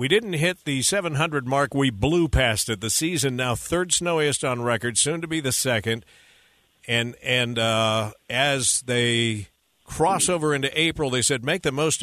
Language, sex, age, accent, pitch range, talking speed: English, male, 50-69, American, 115-145 Hz, 180 wpm